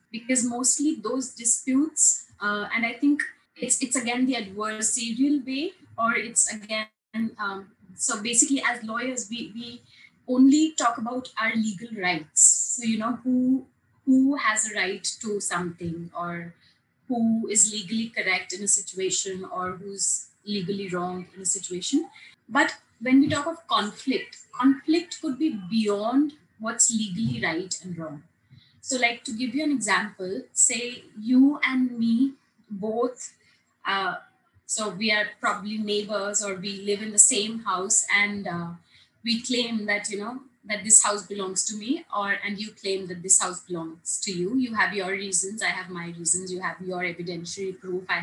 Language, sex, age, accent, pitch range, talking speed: English, female, 20-39, Indian, 195-250 Hz, 165 wpm